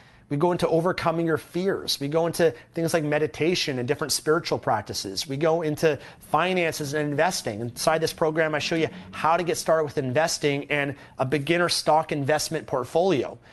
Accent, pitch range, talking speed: American, 130-160 Hz, 180 wpm